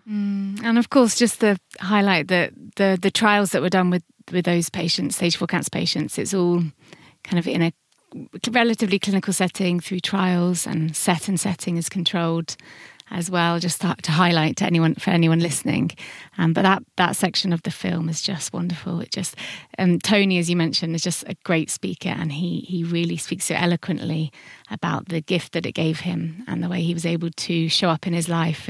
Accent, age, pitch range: British, 30-49, 165-195 Hz